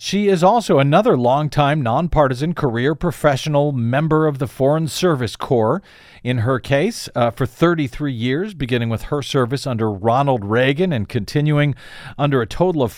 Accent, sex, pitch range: American, male, 125-170 Hz